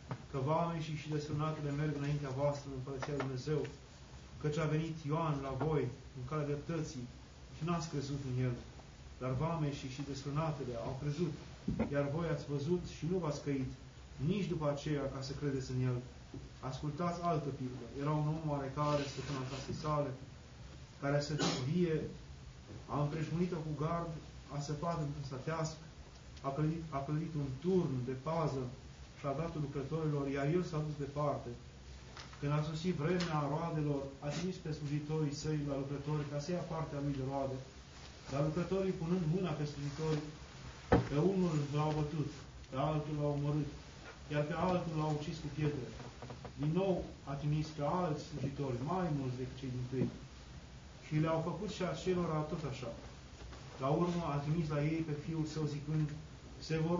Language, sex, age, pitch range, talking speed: Romanian, male, 30-49, 135-155 Hz, 165 wpm